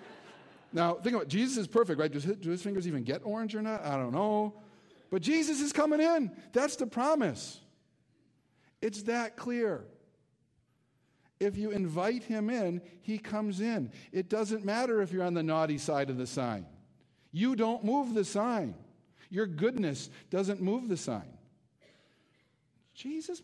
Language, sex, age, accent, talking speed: English, male, 50-69, American, 165 wpm